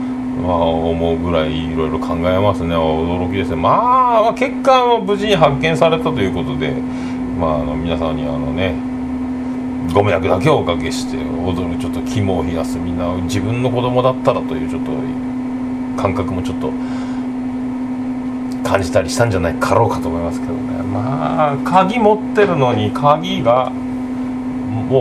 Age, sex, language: 40-59, male, Japanese